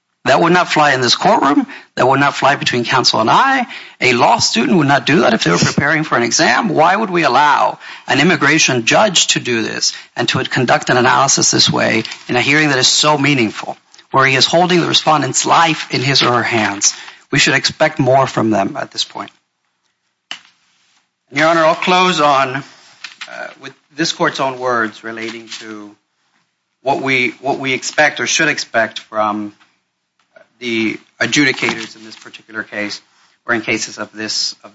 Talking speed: 190 wpm